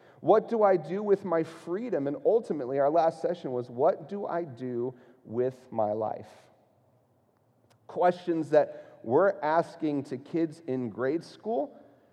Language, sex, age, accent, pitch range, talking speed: English, male, 40-59, American, 135-185 Hz, 145 wpm